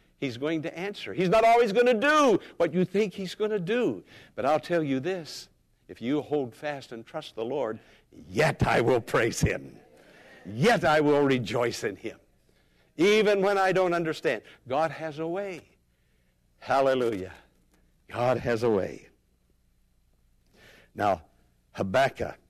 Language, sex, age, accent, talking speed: English, male, 60-79, American, 150 wpm